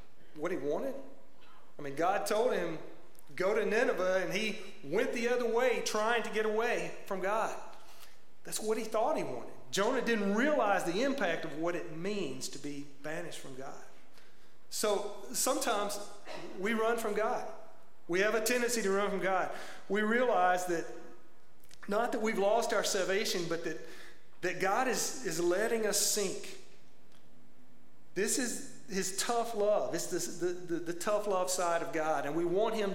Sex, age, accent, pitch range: male, 30-49, American, 165-215 Hz